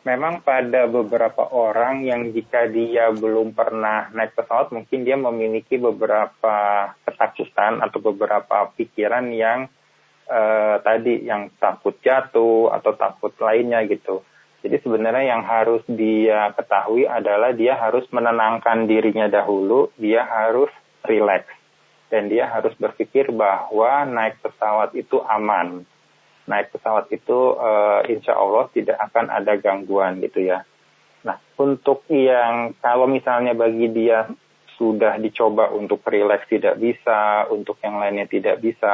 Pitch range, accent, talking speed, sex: 110-125 Hz, native, 130 wpm, male